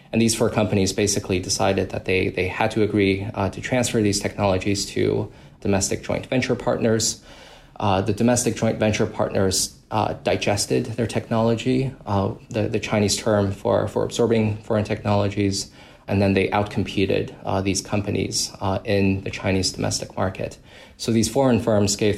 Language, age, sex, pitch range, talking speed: English, 20-39, male, 95-110 Hz, 160 wpm